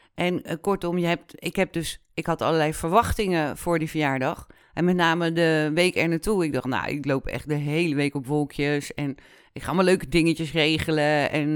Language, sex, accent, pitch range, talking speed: Dutch, female, Dutch, 145-175 Hz, 200 wpm